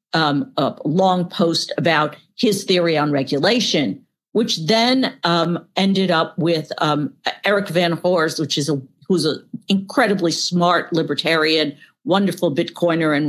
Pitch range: 160-190 Hz